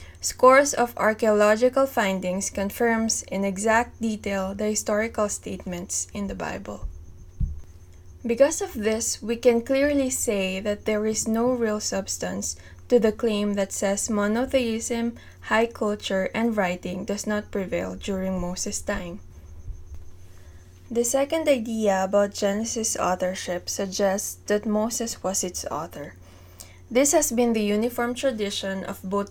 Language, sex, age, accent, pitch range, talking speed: English, female, 20-39, Filipino, 175-230 Hz, 130 wpm